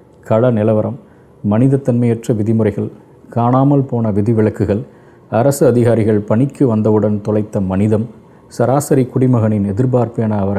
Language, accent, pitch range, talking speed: Tamil, native, 100-125 Hz, 100 wpm